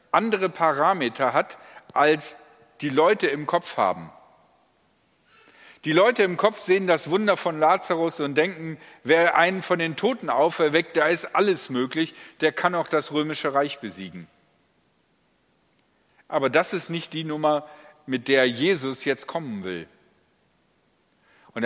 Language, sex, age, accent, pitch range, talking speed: German, male, 50-69, German, 130-165 Hz, 140 wpm